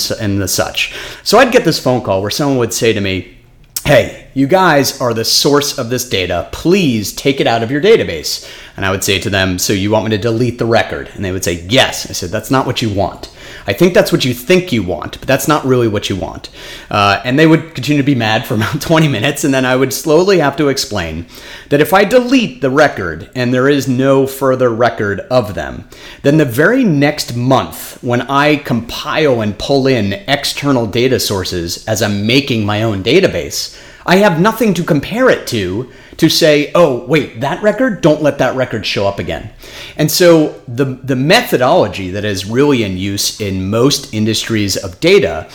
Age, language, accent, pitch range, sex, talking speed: 30-49, English, American, 110-150 Hz, male, 210 wpm